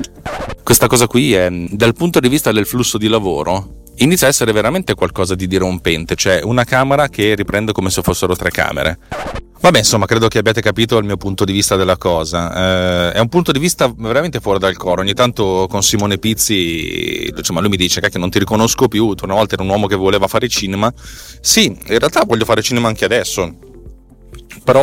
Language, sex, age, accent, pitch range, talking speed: Italian, male, 30-49, native, 95-125 Hz, 205 wpm